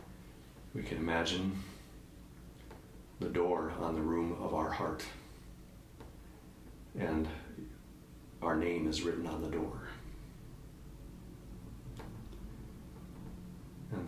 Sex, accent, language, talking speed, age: male, American, English, 85 wpm, 40-59